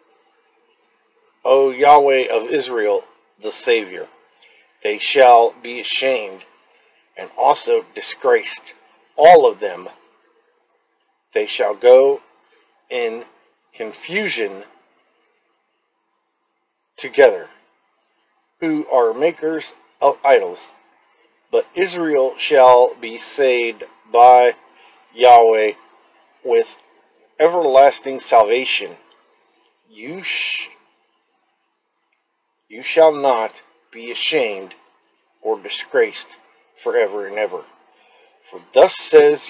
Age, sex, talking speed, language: 40-59, male, 80 wpm, English